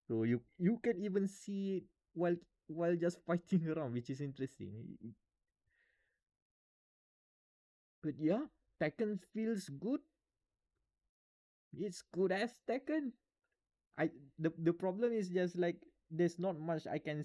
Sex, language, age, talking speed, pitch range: male, English, 20-39, 125 wpm, 135-175 Hz